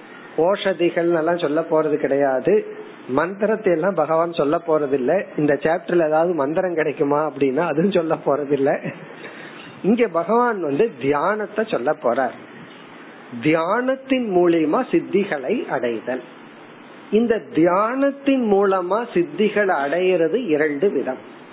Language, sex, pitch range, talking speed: Tamil, male, 160-225 Hz, 80 wpm